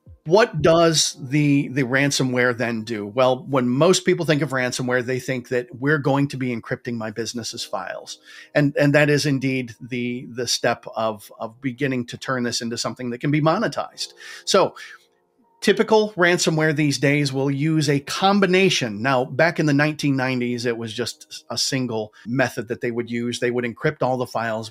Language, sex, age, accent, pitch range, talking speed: English, male, 40-59, American, 120-145 Hz, 180 wpm